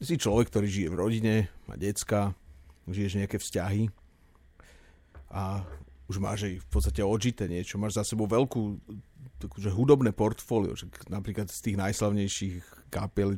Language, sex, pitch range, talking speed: Slovak, male, 90-110 Hz, 140 wpm